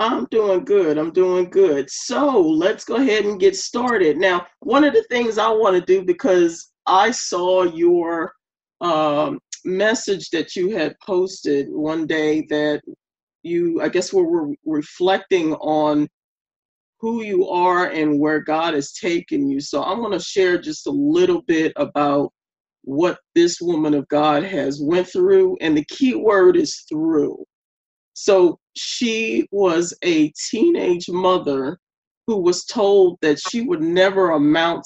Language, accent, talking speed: English, American, 155 wpm